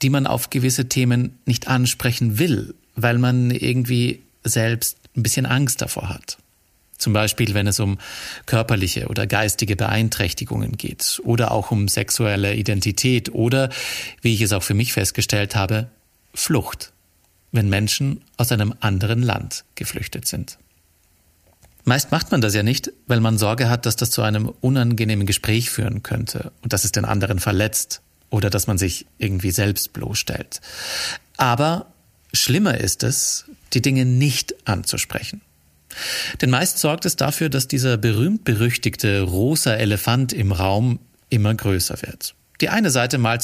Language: German